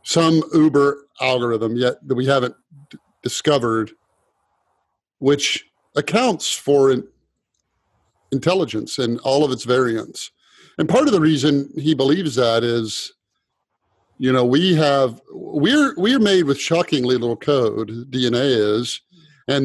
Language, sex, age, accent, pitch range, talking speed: English, male, 50-69, American, 125-160 Hz, 120 wpm